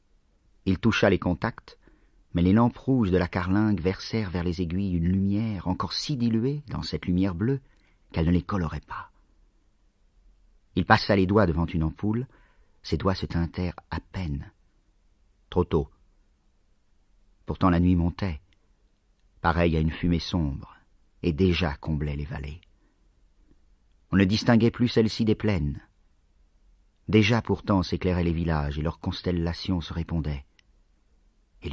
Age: 50-69